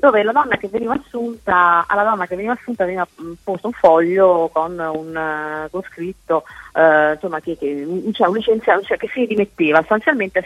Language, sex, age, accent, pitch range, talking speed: Italian, female, 30-49, native, 160-215 Hz, 165 wpm